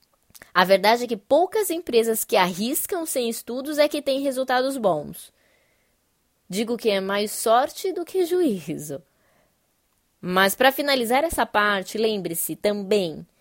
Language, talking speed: Portuguese, 135 wpm